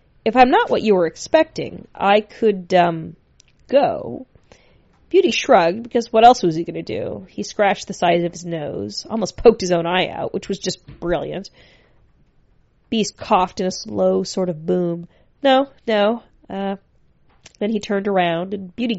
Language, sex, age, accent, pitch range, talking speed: English, female, 30-49, American, 175-210 Hz, 175 wpm